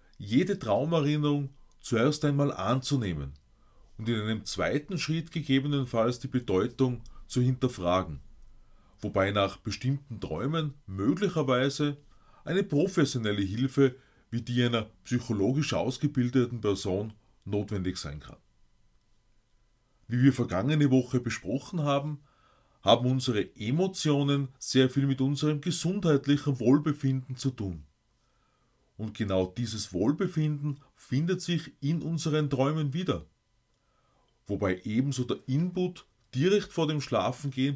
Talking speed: 105 wpm